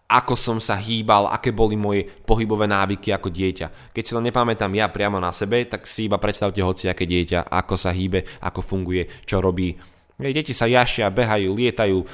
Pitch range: 90-105 Hz